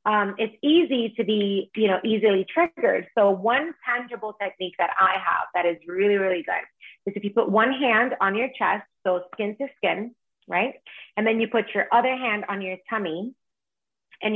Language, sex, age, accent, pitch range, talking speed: English, female, 30-49, American, 180-225 Hz, 190 wpm